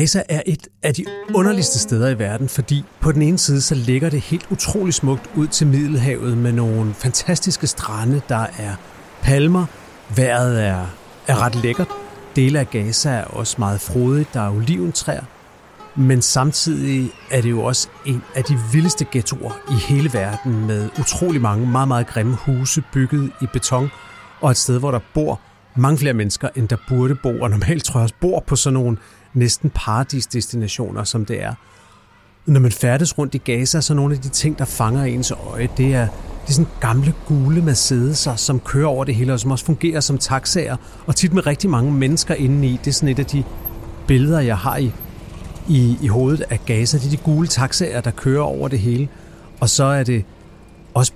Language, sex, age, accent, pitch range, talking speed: Danish, male, 40-59, native, 120-145 Hz, 195 wpm